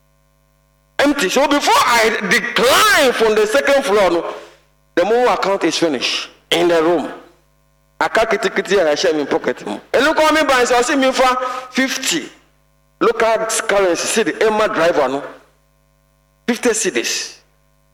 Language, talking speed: English, 165 wpm